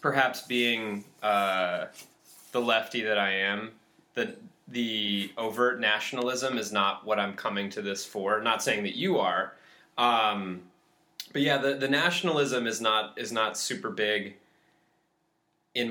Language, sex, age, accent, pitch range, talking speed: English, male, 20-39, American, 100-125 Hz, 145 wpm